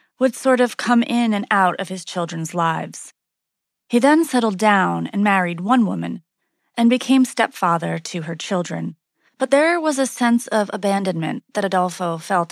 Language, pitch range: English, 175-235 Hz